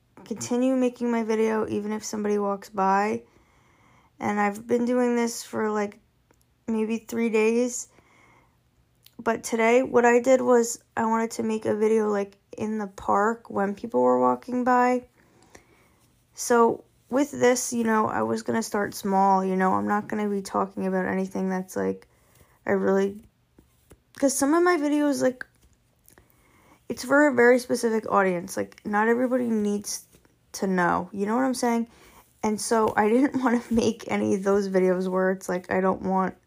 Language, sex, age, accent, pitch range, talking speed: English, female, 10-29, American, 180-230 Hz, 170 wpm